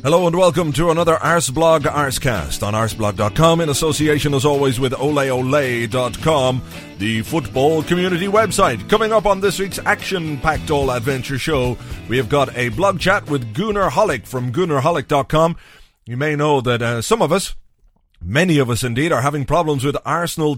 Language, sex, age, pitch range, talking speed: English, male, 30-49, 125-175 Hz, 165 wpm